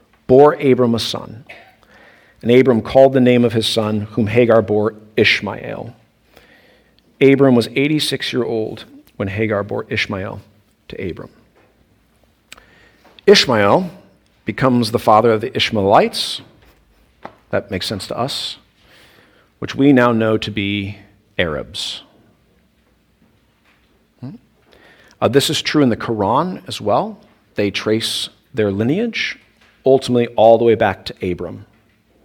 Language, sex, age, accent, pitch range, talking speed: English, male, 50-69, American, 105-130 Hz, 125 wpm